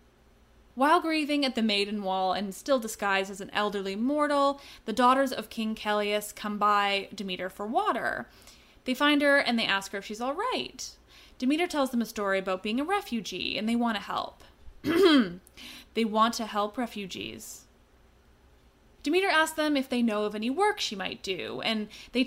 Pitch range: 200-270 Hz